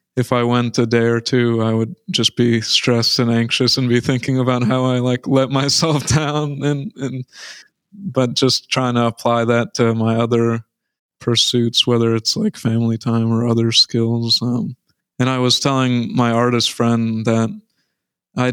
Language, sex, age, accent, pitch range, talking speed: English, male, 20-39, American, 115-130 Hz, 175 wpm